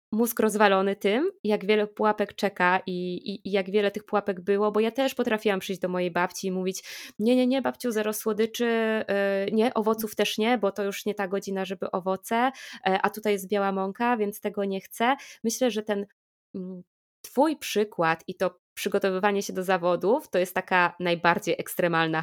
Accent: native